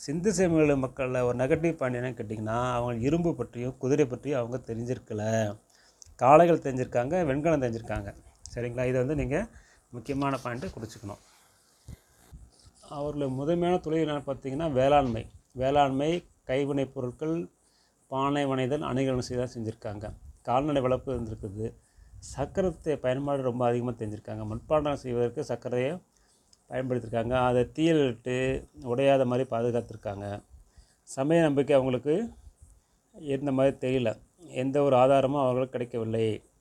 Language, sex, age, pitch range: Tamil, male, 30-49, 120-140 Hz